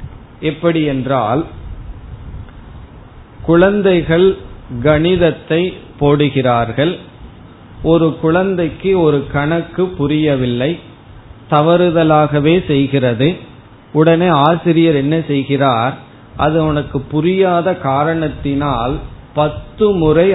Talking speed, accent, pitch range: 60 wpm, native, 135-170 Hz